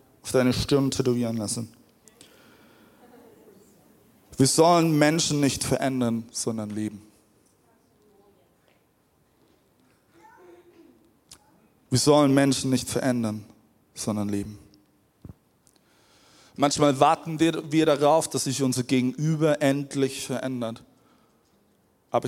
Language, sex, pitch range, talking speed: German, male, 115-150 Hz, 80 wpm